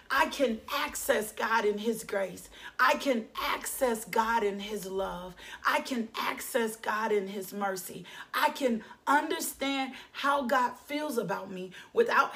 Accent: American